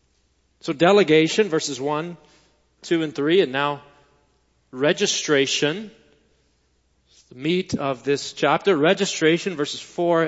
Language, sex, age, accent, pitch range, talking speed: English, male, 40-59, American, 145-185 Hz, 110 wpm